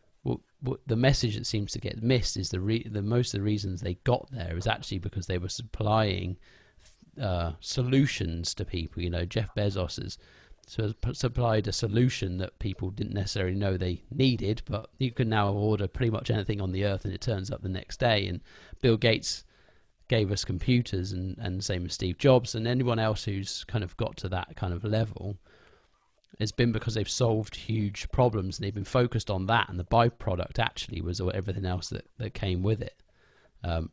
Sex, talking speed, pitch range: male, 195 wpm, 95-115 Hz